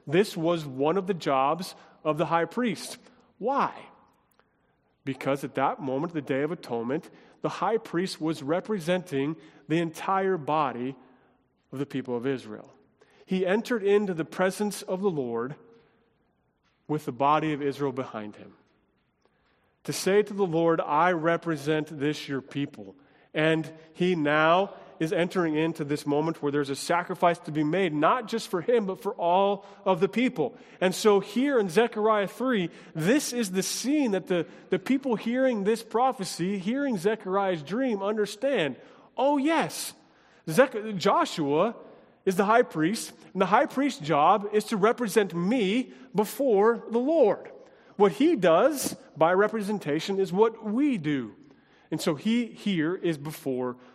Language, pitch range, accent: English, 155-220 Hz, American